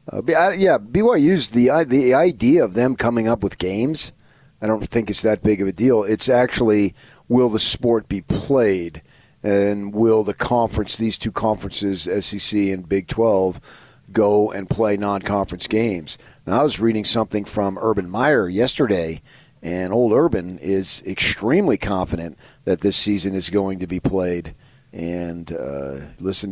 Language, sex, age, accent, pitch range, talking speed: English, male, 40-59, American, 90-115 Hz, 160 wpm